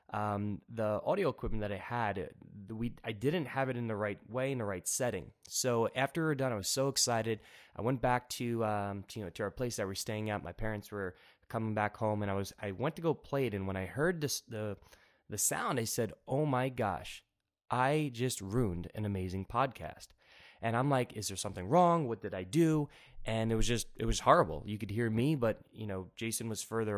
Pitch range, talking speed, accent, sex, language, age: 105-125 Hz, 240 wpm, American, male, English, 20-39